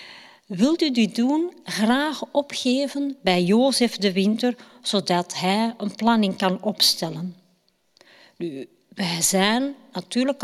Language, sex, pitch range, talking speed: Dutch, female, 190-280 Hz, 115 wpm